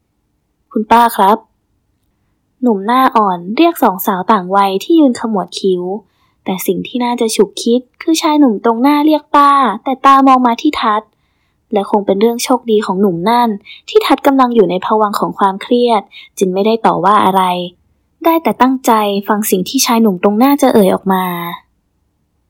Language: Thai